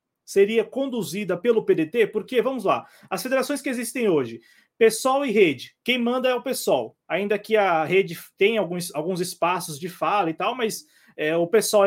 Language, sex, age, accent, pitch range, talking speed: Portuguese, male, 20-39, Brazilian, 185-255 Hz, 175 wpm